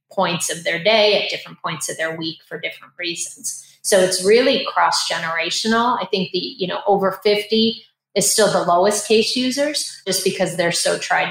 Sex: female